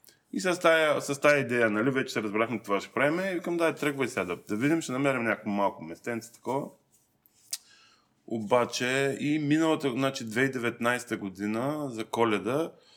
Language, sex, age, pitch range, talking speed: Bulgarian, male, 20-39, 105-135 Hz, 155 wpm